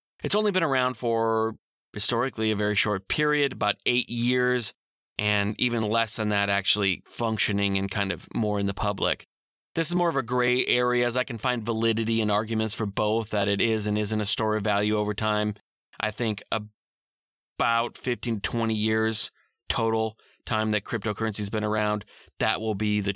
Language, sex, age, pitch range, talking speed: English, male, 30-49, 105-120 Hz, 185 wpm